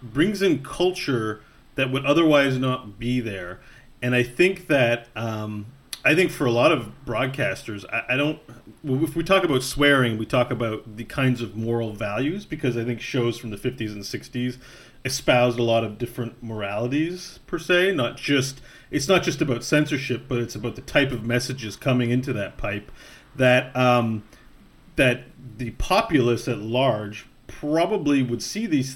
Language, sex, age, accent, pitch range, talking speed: English, male, 40-59, American, 115-135 Hz, 170 wpm